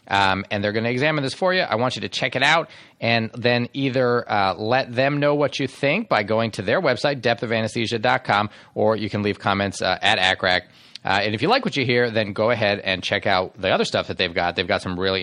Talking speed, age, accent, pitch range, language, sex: 250 wpm, 30-49, American, 95-120 Hz, English, male